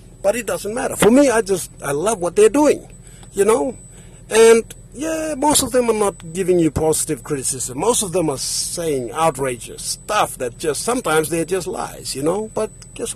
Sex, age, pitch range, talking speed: male, 60-79, 130-210 Hz, 195 wpm